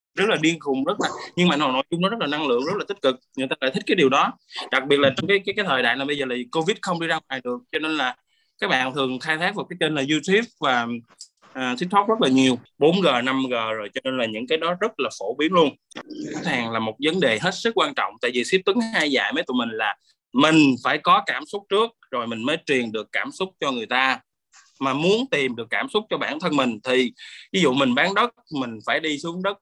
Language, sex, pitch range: Vietnamese, male, 130-185 Hz